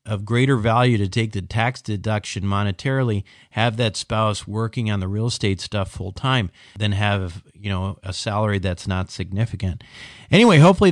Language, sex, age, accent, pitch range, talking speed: English, male, 40-59, American, 100-120 Hz, 165 wpm